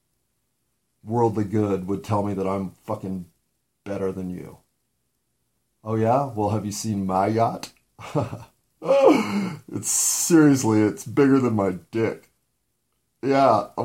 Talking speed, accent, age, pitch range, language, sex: 115 wpm, American, 40-59, 95-120 Hz, English, male